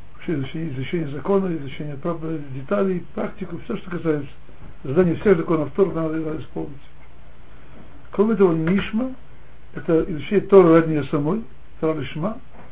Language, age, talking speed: Russian, 60-79, 125 wpm